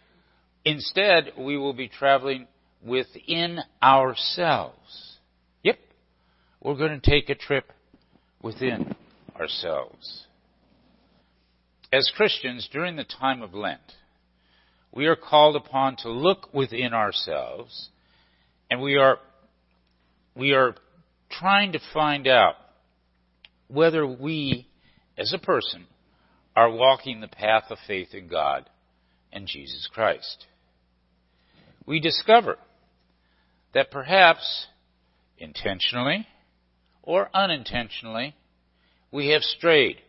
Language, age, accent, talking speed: English, 50-69, American, 100 wpm